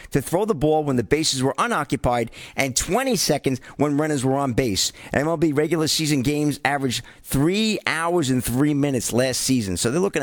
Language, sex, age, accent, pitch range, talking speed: English, male, 40-59, American, 125-165 Hz, 190 wpm